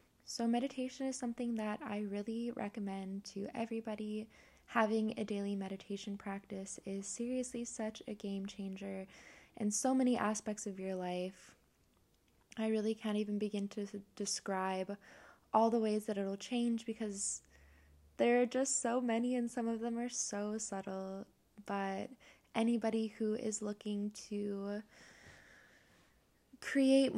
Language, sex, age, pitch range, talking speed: English, female, 10-29, 200-230 Hz, 135 wpm